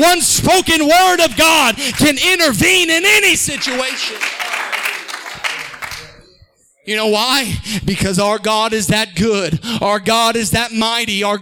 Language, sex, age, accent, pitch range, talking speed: English, male, 30-49, American, 175-260 Hz, 130 wpm